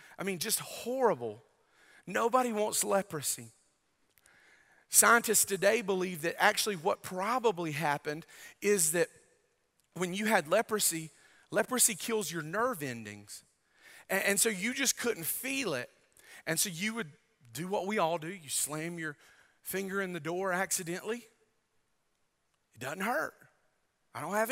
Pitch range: 155-215 Hz